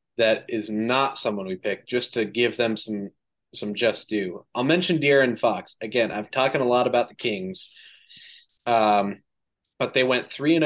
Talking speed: 180 wpm